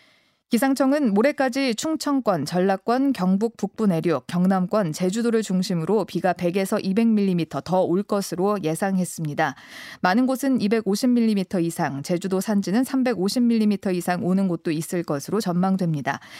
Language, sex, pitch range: Korean, female, 175-235 Hz